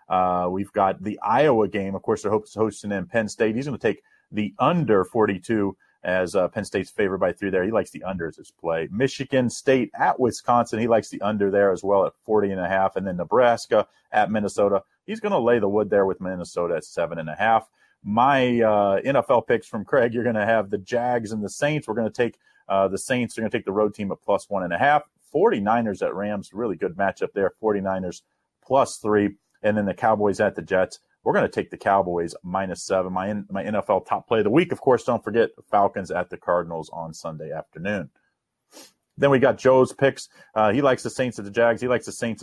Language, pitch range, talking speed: English, 95-115 Hz, 235 wpm